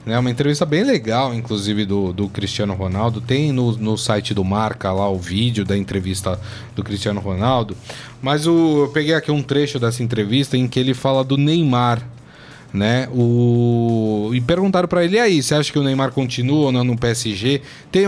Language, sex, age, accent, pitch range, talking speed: Portuguese, male, 20-39, Brazilian, 115-145 Hz, 195 wpm